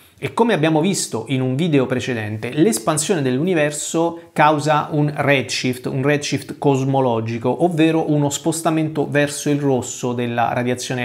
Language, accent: Italian, native